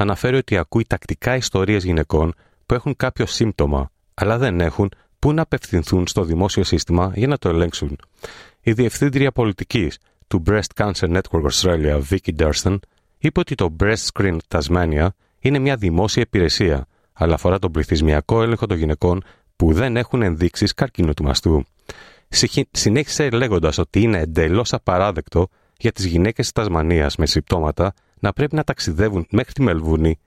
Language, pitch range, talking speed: Greek, 85-115 Hz, 155 wpm